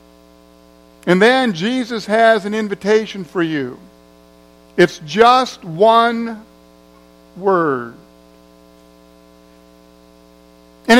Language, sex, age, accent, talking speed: English, male, 60-79, American, 70 wpm